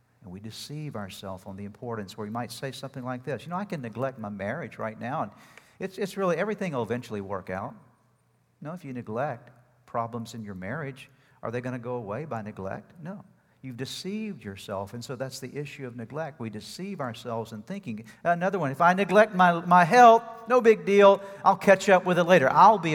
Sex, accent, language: male, American, English